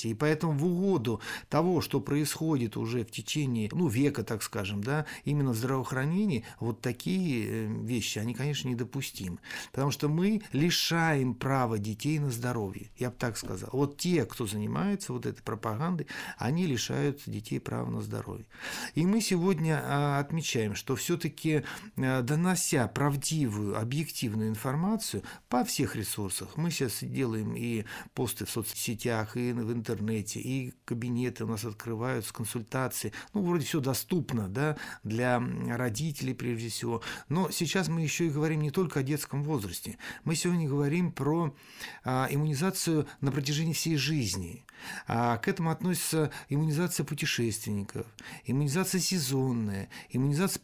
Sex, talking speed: male, 140 wpm